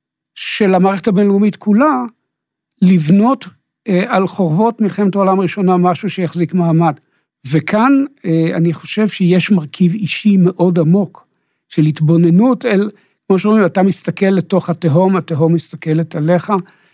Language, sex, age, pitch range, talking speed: Hebrew, male, 60-79, 165-200 Hz, 125 wpm